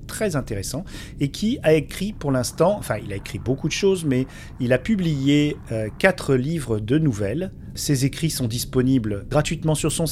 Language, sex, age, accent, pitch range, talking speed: French, male, 40-59, French, 110-160 Hz, 185 wpm